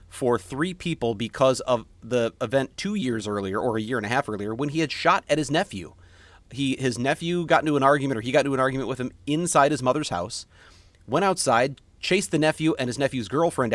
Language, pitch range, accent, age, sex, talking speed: English, 105-145 Hz, American, 30-49, male, 225 wpm